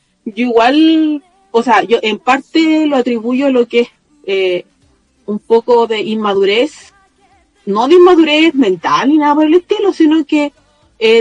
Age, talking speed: 40-59, 160 wpm